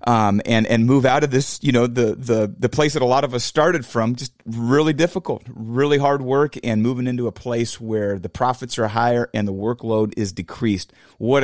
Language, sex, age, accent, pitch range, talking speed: English, male, 40-59, American, 120-150 Hz, 220 wpm